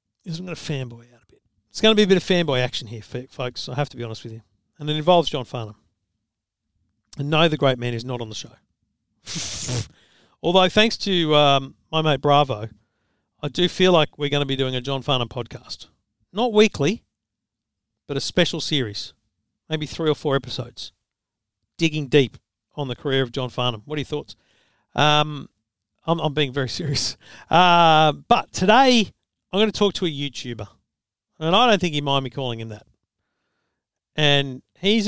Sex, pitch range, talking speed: male, 115-155 Hz, 190 wpm